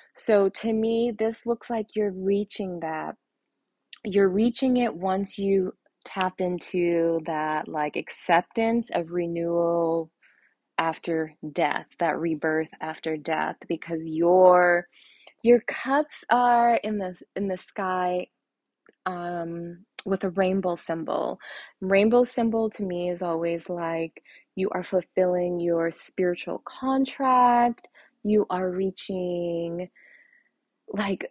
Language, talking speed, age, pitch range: English, 115 wpm, 20-39, 170-210 Hz